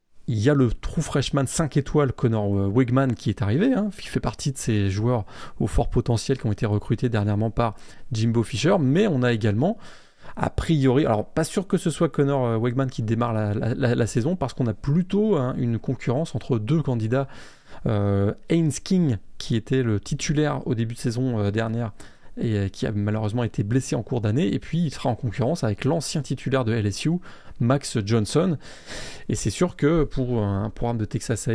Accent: French